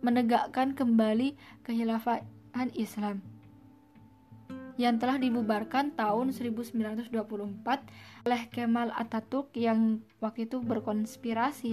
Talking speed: 80 wpm